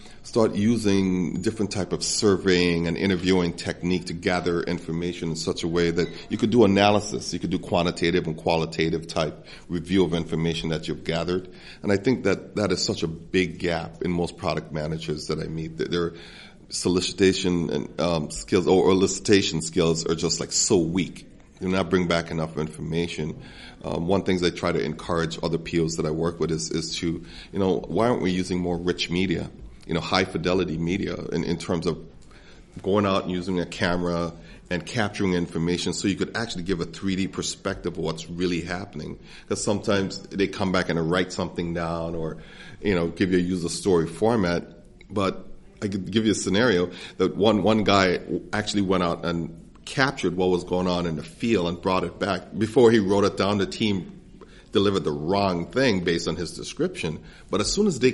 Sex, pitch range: male, 85-95 Hz